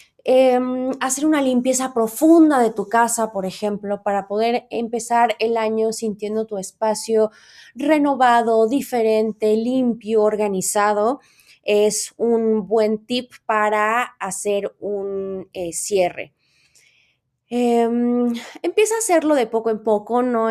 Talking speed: 115 wpm